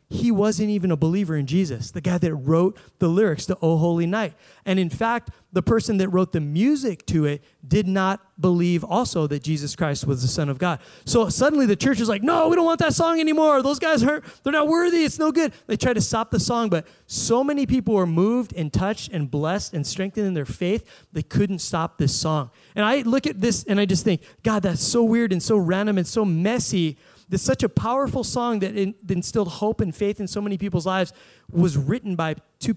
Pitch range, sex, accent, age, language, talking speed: 165-225 Hz, male, American, 30-49, English, 230 wpm